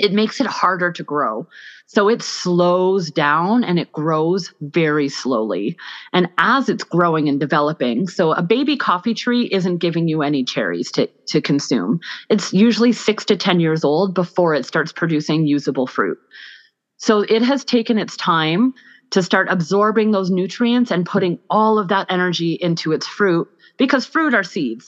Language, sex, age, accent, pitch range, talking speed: English, female, 30-49, American, 165-210 Hz, 170 wpm